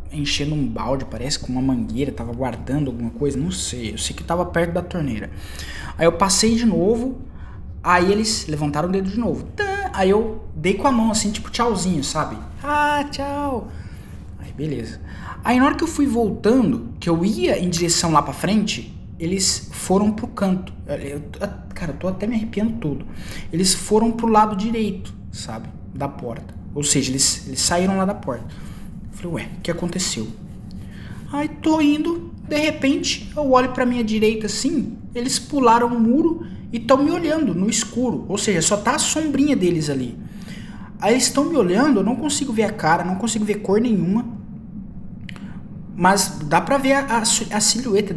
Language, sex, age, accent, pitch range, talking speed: Portuguese, male, 20-39, Brazilian, 165-235 Hz, 180 wpm